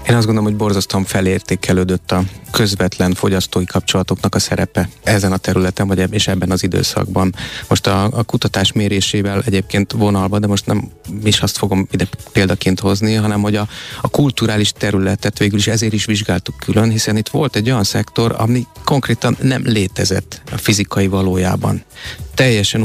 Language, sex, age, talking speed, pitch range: Hungarian, male, 30-49, 160 wpm, 95-115 Hz